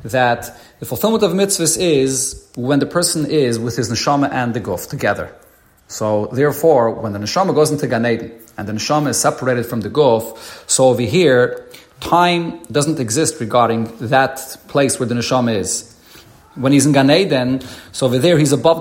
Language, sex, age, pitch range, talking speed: English, male, 40-59, 125-160 Hz, 175 wpm